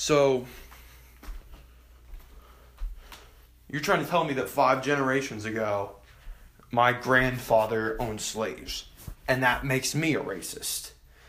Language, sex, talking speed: English, male, 105 wpm